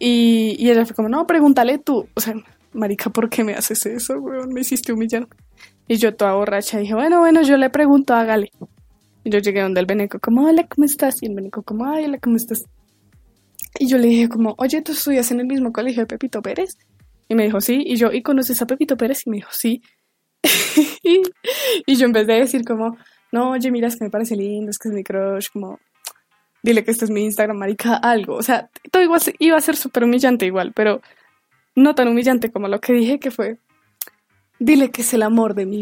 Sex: female